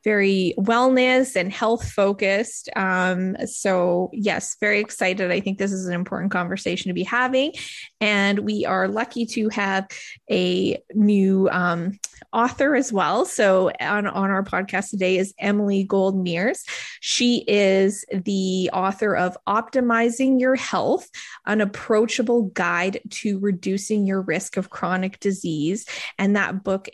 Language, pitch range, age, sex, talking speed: English, 190-220 Hz, 20-39, female, 140 wpm